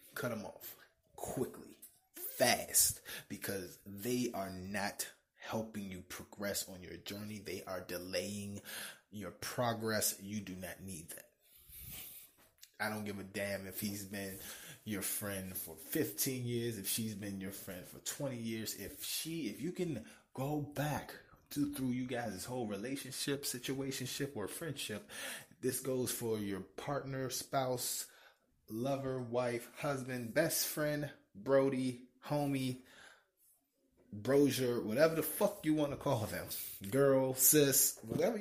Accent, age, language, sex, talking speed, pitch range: American, 20-39, English, male, 135 wpm, 100-140 Hz